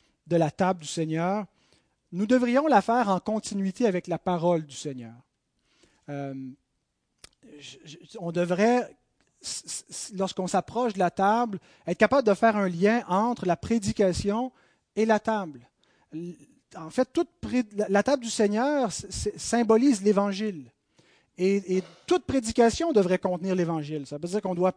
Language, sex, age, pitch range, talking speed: French, male, 30-49, 175-230 Hz, 145 wpm